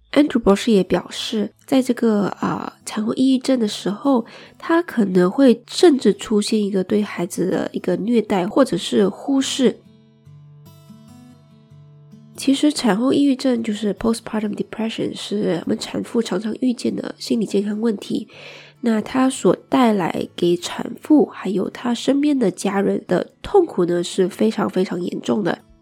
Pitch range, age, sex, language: 190-250 Hz, 20-39, female, English